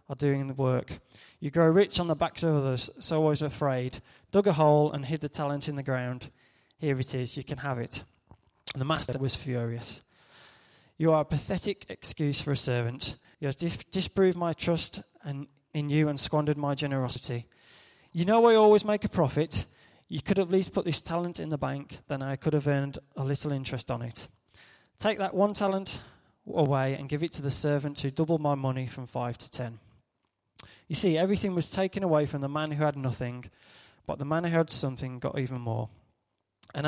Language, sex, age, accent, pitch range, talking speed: English, male, 20-39, British, 125-160 Hz, 205 wpm